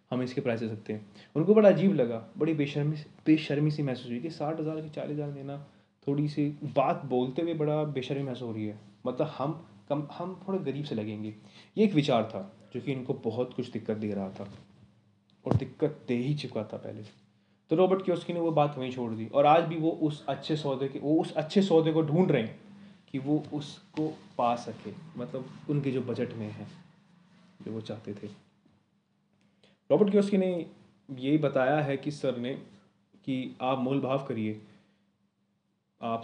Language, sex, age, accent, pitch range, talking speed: Hindi, male, 20-39, native, 115-150 Hz, 190 wpm